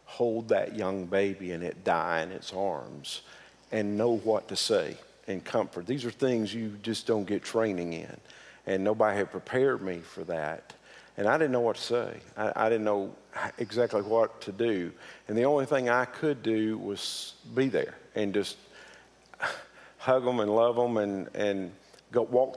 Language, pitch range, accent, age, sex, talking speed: English, 105-125 Hz, American, 50-69, male, 185 wpm